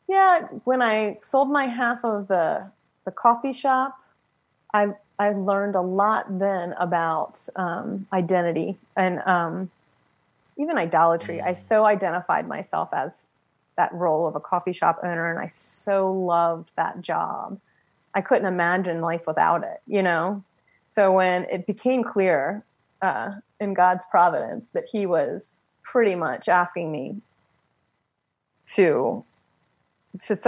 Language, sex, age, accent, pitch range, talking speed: English, female, 30-49, American, 180-225 Hz, 135 wpm